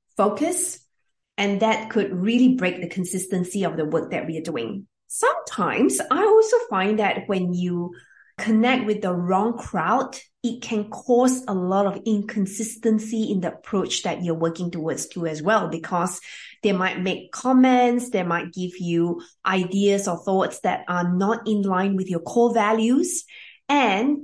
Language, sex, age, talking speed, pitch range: English, female, 20-39, 165 wpm, 180-230 Hz